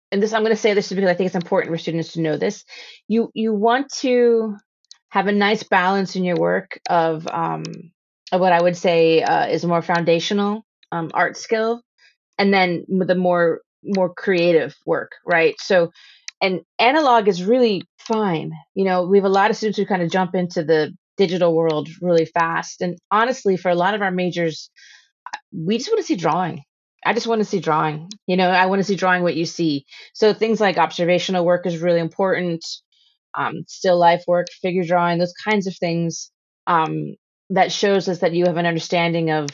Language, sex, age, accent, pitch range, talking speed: English, female, 30-49, American, 170-205 Hz, 200 wpm